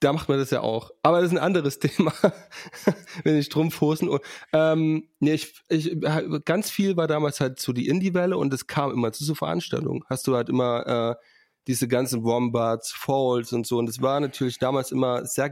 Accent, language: German, German